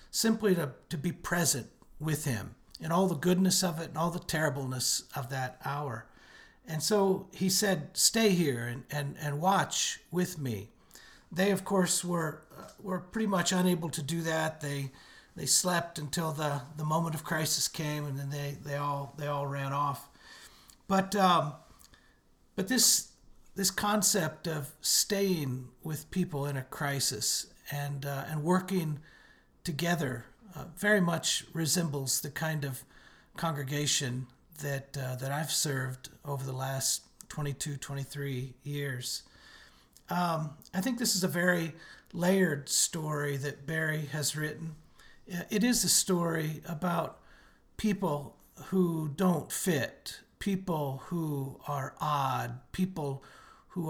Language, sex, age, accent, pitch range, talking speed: English, male, 50-69, American, 140-175 Hz, 140 wpm